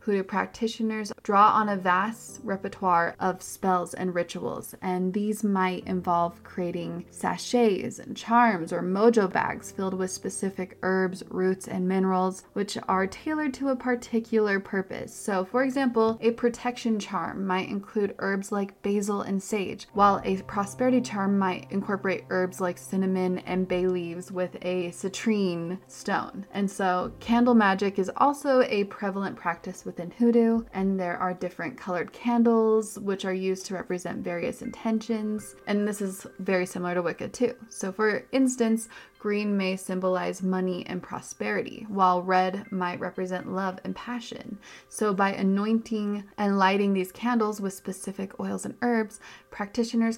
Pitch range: 185-225 Hz